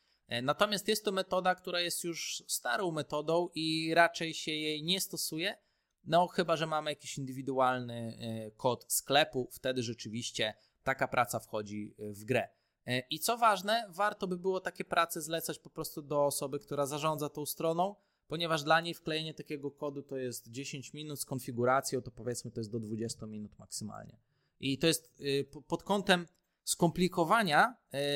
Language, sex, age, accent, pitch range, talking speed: Polish, male, 20-39, native, 130-180 Hz, 160 wpm